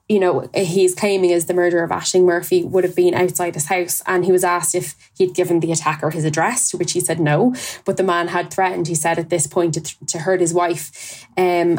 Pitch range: 170-190 Hz